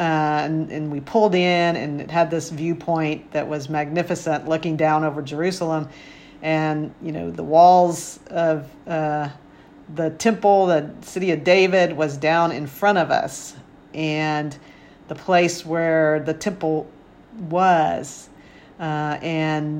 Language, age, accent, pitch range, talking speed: English, 50-69, American, 155-175 Hz, 140 wpm